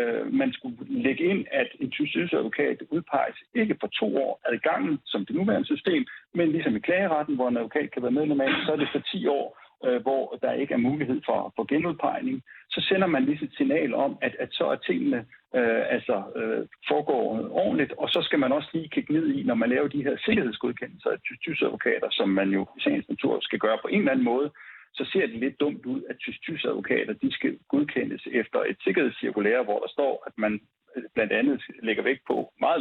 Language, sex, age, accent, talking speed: Danish, male, 60-79, native, 215 wpm